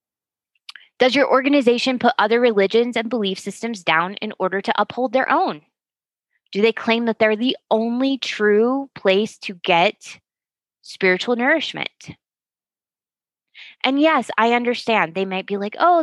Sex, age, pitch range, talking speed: female, 20-39, 195-255 Hz, 140 wpm